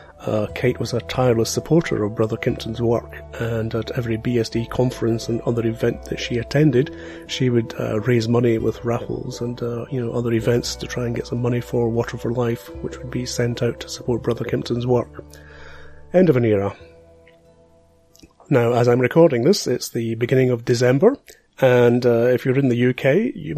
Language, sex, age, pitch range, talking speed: English, male, 30-49, 115-140 Hz, 195 wpm